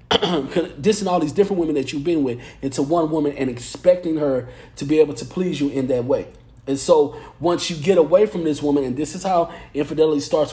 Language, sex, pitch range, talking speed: English, male, 135-165 Hz, 230 wpm